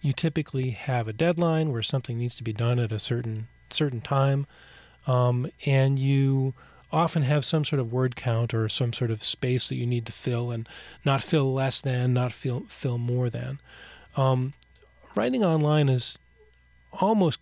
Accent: American